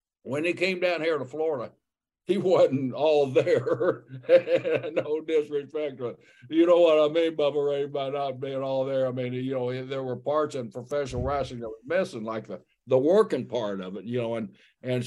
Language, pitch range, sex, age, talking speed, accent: English, 115-145 Hz, male, 60-79, 200 wpm, American